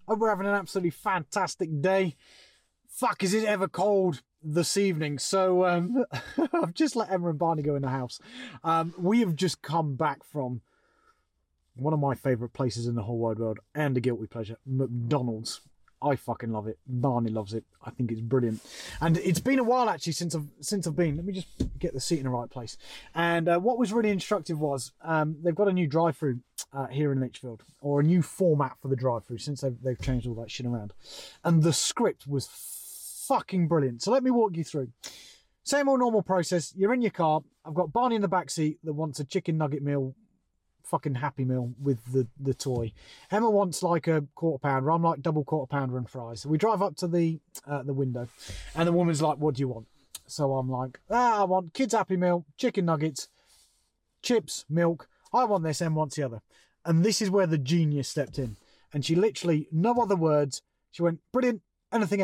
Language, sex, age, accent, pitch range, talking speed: English, male, 30-49, British, 135-185 Hz, 210 wpm